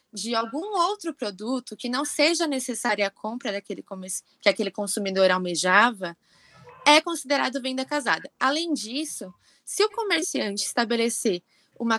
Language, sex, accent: Portuguese, female, Brazilian